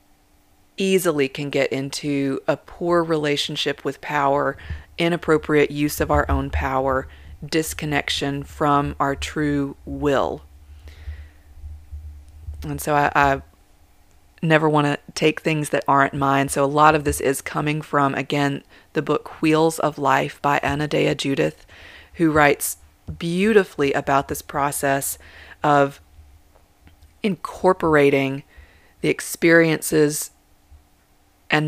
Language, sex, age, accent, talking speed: English, female, 30-49, American, 115 wpm